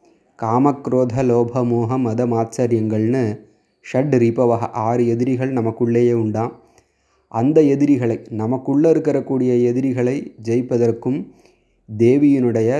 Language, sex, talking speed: Tamil, male, 85 wpm